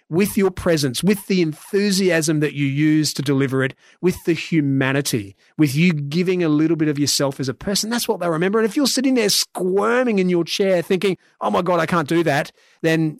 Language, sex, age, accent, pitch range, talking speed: English, male, 30-49, Australian, 145-180 Hz, 220 wpm